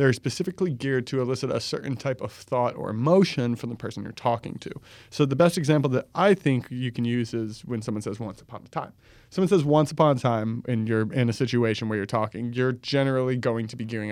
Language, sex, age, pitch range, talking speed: English, male, 20-39, 110-135 Hz, 240 wpm